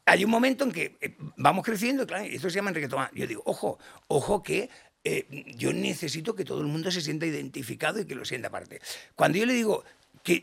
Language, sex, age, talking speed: Spanish, male, 50-69, 220 wpm